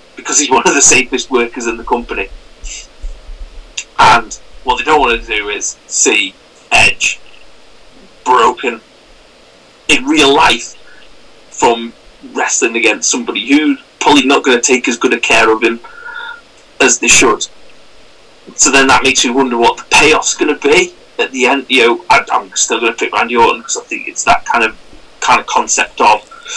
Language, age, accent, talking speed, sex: English, 30-49, British, 175 wpm, male